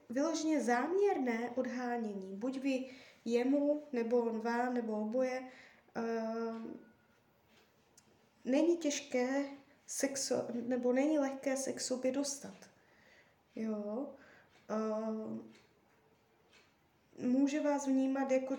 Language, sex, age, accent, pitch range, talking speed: Czech, female, 20-39, native, 220-255 Hz, 85 wpm